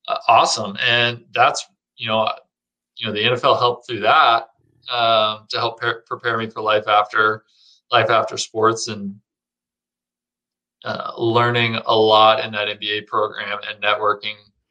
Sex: male